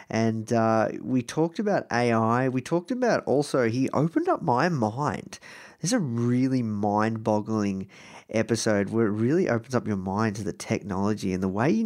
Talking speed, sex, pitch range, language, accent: 170 wpm, male, 100-125 Hz, English, Australian